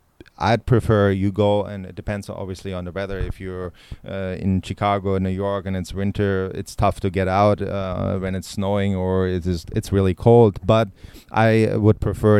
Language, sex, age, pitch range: English, male, 30-49, 95-110 Hz